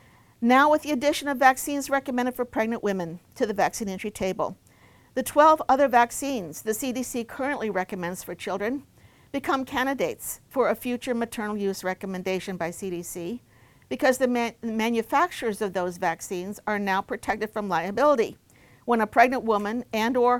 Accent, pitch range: American, 190-255 Hz